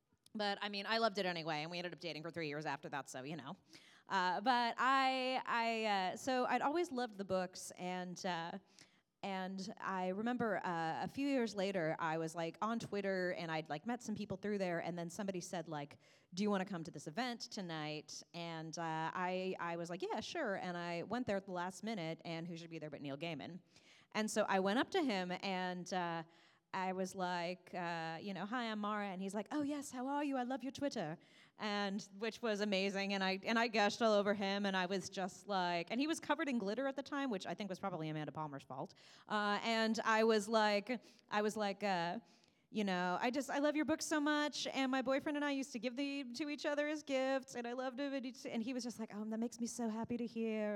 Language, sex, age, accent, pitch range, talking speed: English, female, 30-49, American, 175-235 Hz, 245 wpm